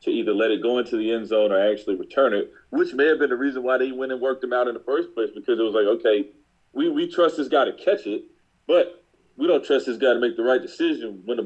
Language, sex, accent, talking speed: English, male, American, 295 wpm